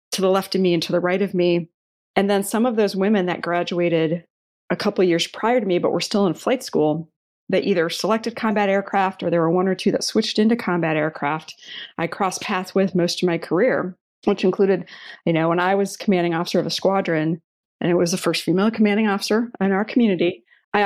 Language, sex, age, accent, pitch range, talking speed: English, female, 30-49, American, 175-205 Hz, 230 wpm